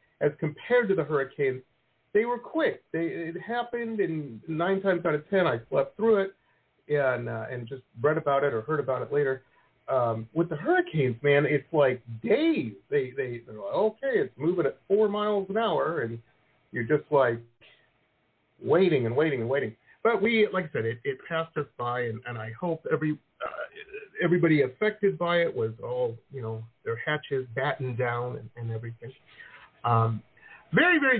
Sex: male